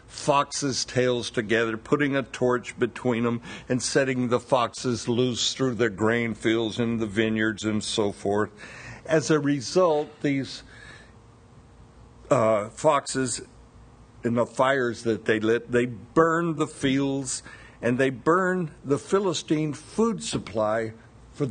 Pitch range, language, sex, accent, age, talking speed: 115-145 Hz, English, male, American, 60-79, 130 wpm